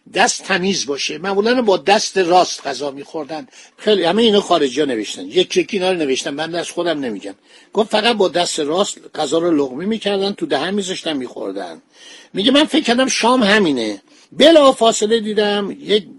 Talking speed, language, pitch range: 170 wpm, Persian, 160-215 Hz